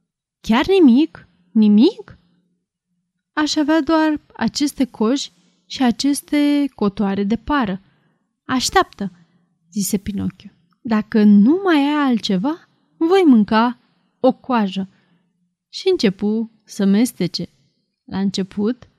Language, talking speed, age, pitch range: Romanian, 100 wpm, 20-39, 195-265 Hz